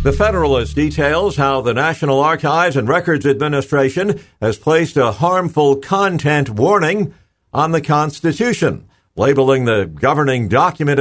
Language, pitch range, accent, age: English, 125-155 Hz, American, 50-69